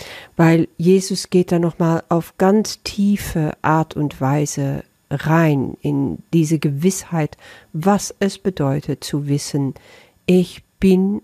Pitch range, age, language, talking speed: 145-190 Hz, 50-69, German, 115 wpm